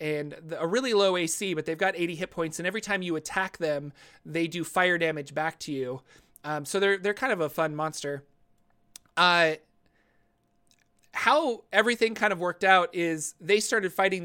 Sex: male